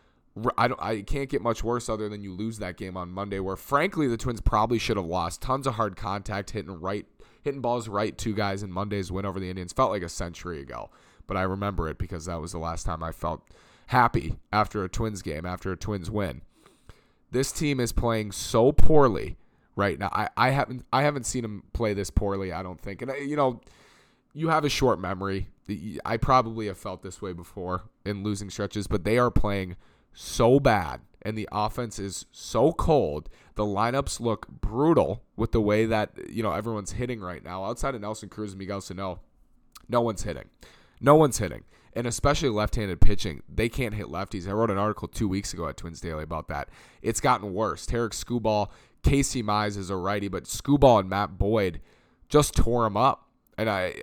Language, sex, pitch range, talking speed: English, male, 95-115 Hz, 205 wpm